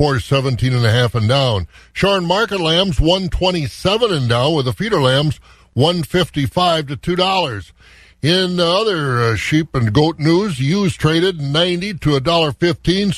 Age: 60-79